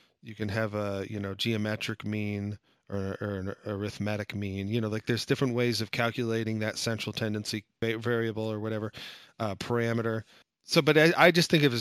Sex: male